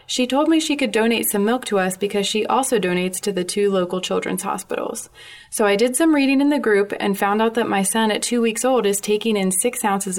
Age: 20-39